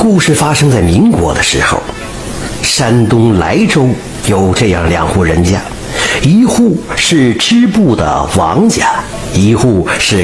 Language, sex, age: Chinese, male, 50-69